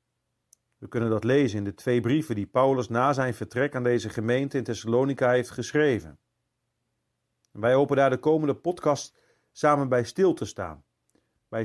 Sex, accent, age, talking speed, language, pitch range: male, Dutch, 40-59, 165 wpm, Dutch, 110-145 Hz